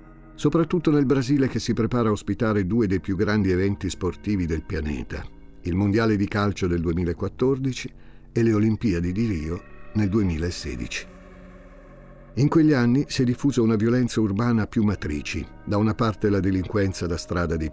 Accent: native